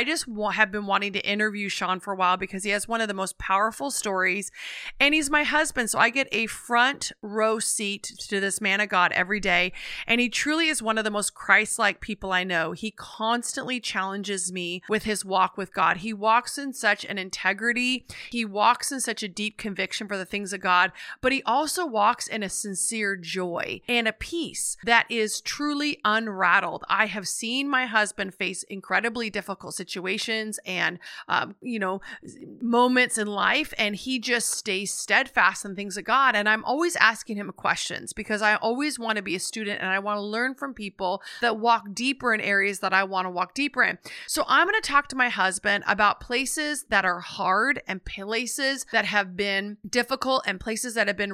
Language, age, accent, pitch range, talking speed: English, 30-49, American, 195-240 Hz, 205 wpm